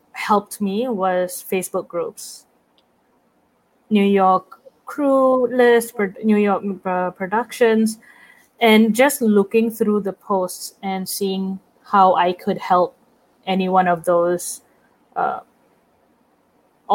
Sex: female